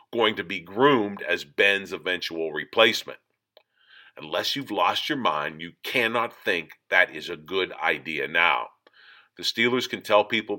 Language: English